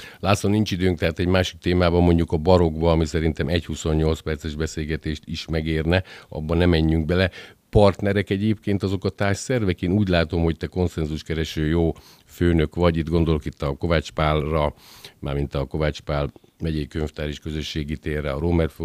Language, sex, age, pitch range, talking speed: Hungarian, male, 50-69, 75-90 Hz, 170 wpm